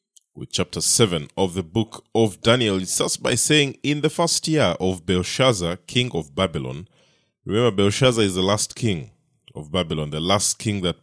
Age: 20-39